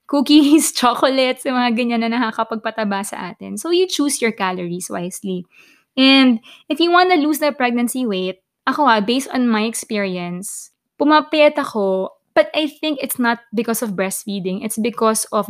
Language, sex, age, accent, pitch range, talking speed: Filipino, female, 20-39, native, 200-255 Hz, 165 wpm